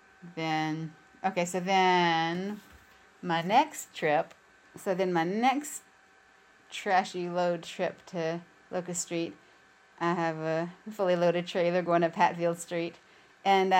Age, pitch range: 30-49, 170-195 Hz